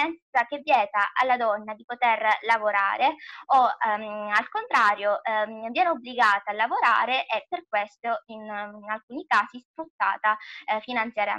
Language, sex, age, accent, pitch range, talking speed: Italian, female, 20-39, native, 215-260 Hz, 130 wpm